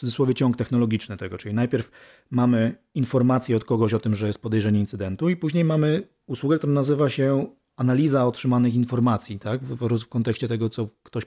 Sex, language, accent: male, Polish, native